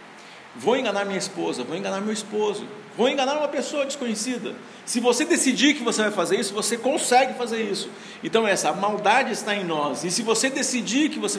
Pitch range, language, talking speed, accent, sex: 175-230 Hz, Portuguese, 195 wpm, Brazilian, male